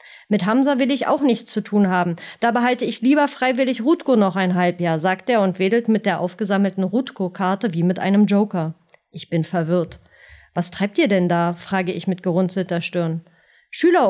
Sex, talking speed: female, 185 wpm